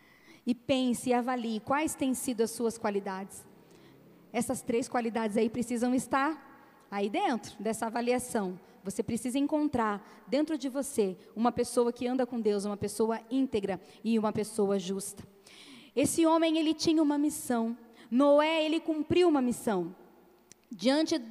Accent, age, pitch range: Brazilian, 20-39, 225-275 Hz